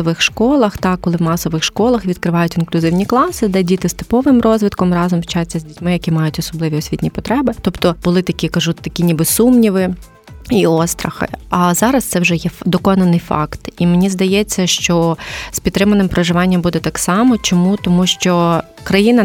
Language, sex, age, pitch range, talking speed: Ukrainian, female, 20-39, 160-185 Hz, 165 wpm